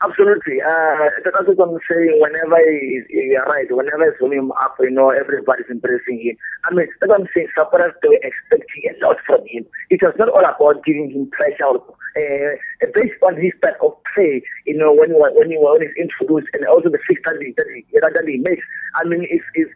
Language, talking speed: English, 205 wpm